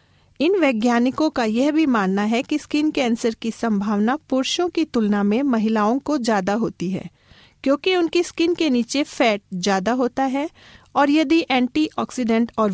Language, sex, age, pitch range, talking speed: Hindi, female, 40-59, 230-285 Hz, 160 wpm